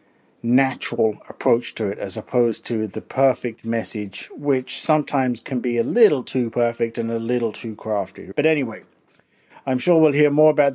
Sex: male